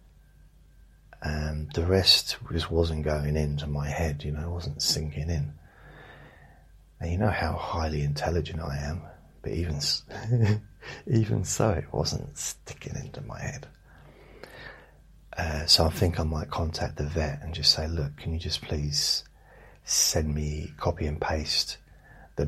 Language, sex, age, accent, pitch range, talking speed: English, male, 30-49, British, 75-85 Hz, 150 wpm